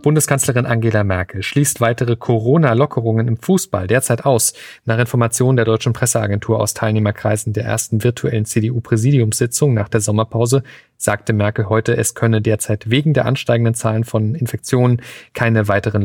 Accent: German